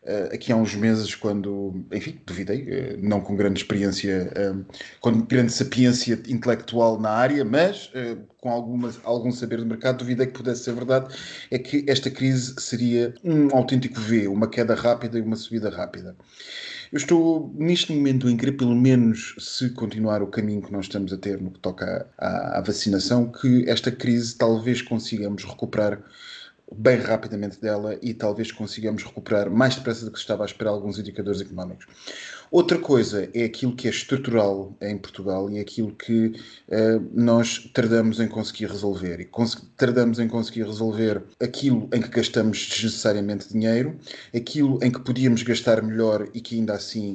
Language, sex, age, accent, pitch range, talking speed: Portuguese, male, 20-39, Portuguese, 105-120 Hz, 170 wpm